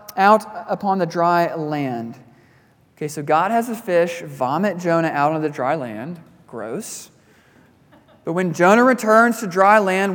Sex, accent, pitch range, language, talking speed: male, American, 150-220 Hz, English, 155 wpm